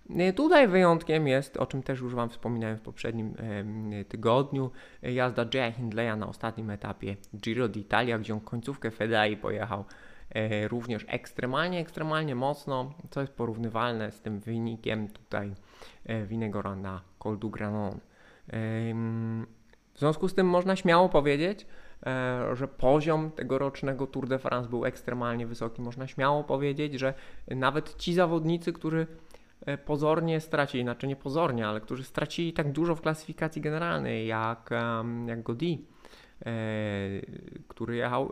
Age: 20-39